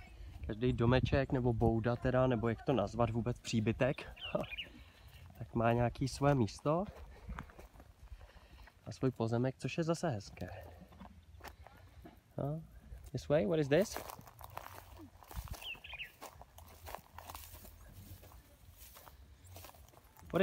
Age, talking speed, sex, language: 20-39, 90 wpm, male, Czech